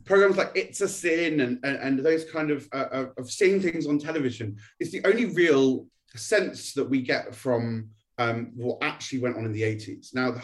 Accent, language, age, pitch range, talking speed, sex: British, English, 30-49, 115-145 Hz, 205 wpm, male